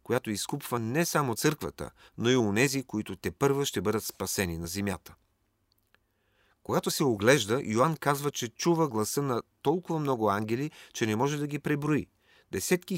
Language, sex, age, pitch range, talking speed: Bulgarian, male, 40-59, 100-135 Hz, 165 wpm